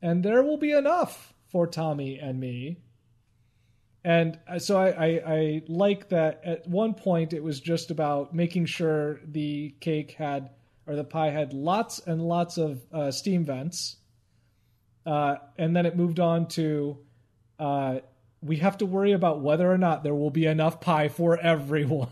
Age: 30-49